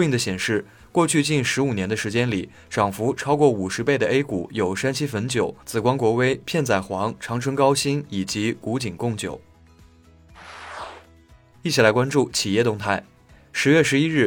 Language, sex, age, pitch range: Chinese, male, 20-39, 100-135 Hz